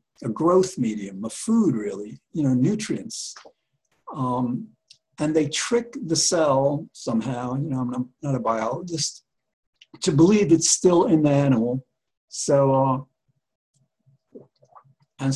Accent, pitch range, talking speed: American, 125-165 Hz, 125 wpm